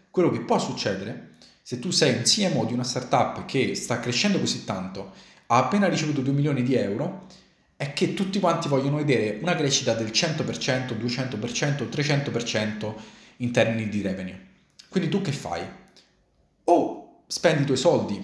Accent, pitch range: native, 110-170 Hz